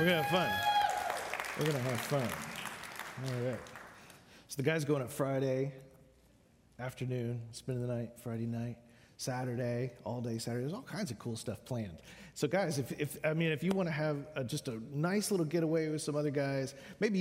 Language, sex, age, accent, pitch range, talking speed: English, male, 40-59, American, 125-160 Hz, 195 wpm